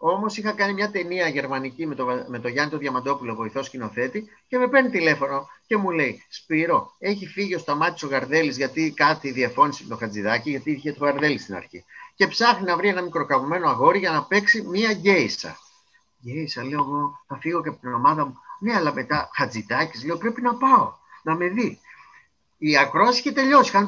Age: 30-49